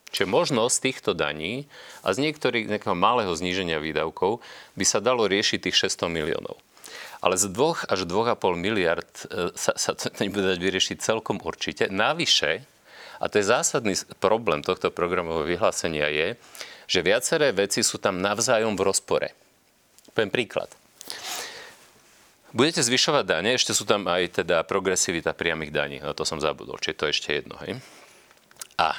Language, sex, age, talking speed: Slovak, male, 40-59, 155 wpm